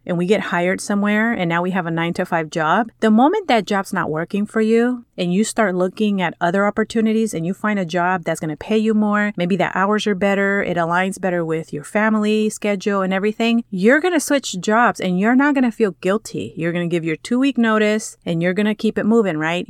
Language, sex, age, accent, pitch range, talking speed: English, female, 30-49, American, 175-215 Hz, 245 wpm